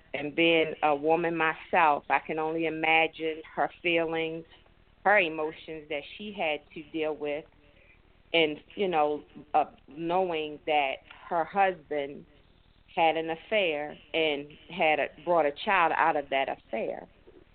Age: 40-59